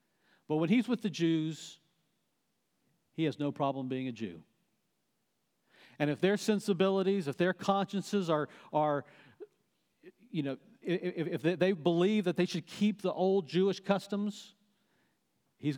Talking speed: 135 wpm